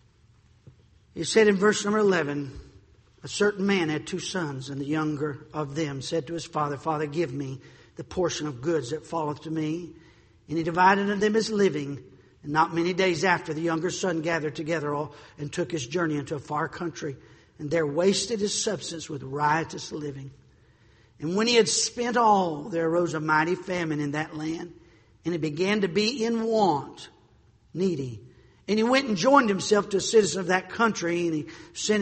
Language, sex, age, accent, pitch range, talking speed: English, male, 50-69, American, 140-185 Hz, 195 wpm